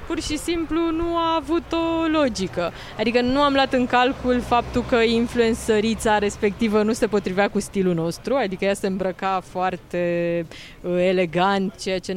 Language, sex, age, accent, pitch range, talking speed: Romanian, female, 20-39, native, 185-245 Hz, 160 wpm